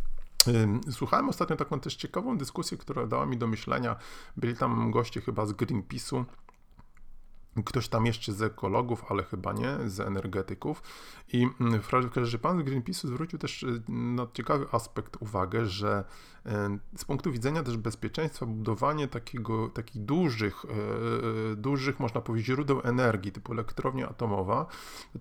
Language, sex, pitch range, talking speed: Polish, male, 105-130 Hz, 145 wpm